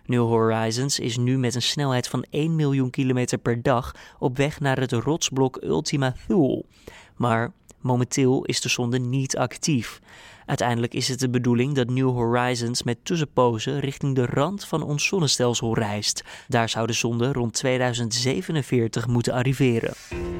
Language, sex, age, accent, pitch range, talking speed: Dutch, male, 20-39, Dutch, 120-140 Hz, 155 wpm